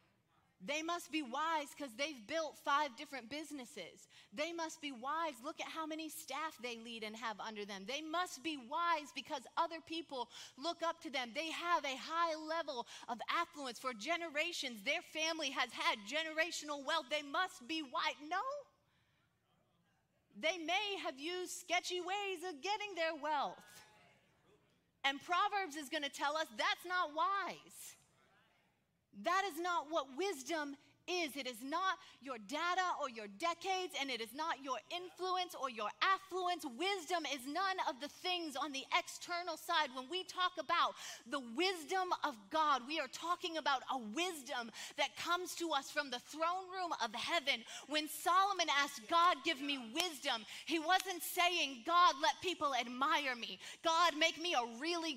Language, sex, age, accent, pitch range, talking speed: English, female, 30-49, American, 280-345 Hz, 165 wpm